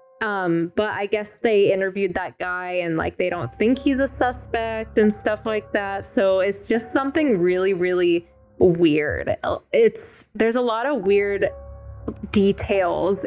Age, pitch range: 10-29, 175-215 Hz